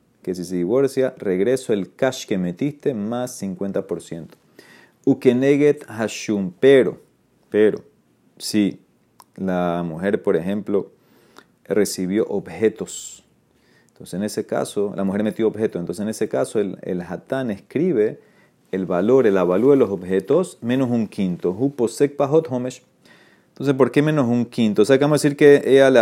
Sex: male